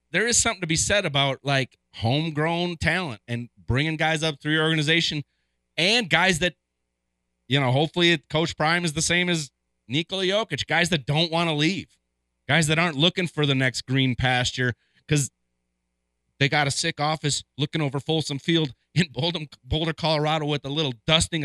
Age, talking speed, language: 30-49, 180 wpm, English